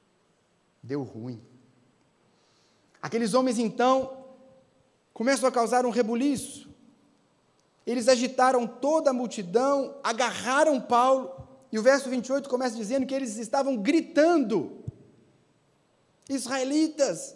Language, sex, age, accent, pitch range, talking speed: Portuguese, male, 40-59, Brazilian, 170-250 Hz, 95 wpm